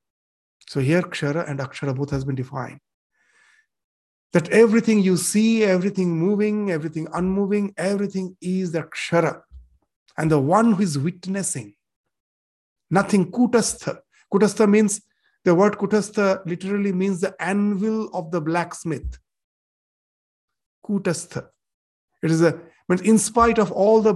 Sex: male